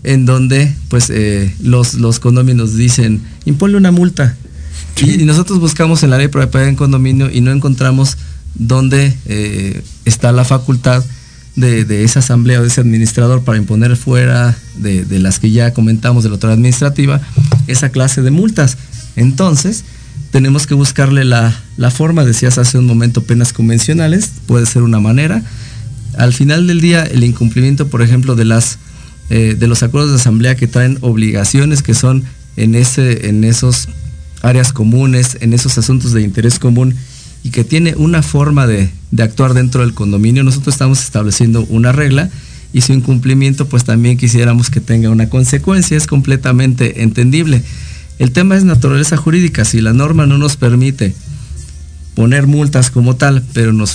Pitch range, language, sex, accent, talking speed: 115-135 Hz, Spanish, male, Mexican, 165 wpm